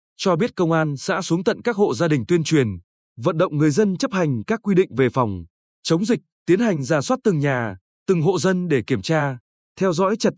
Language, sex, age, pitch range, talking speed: Vietnamese, male, 20-39, 145-195 Hz, 235 wpm